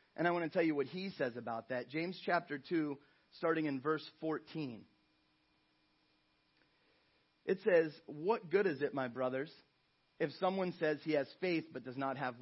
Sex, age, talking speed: male, 30-49, 175 wpm